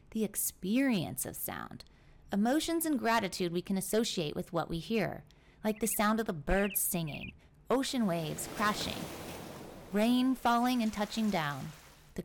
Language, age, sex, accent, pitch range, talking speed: English, 30-49, female, American, 180-225 Hz, 145 wpm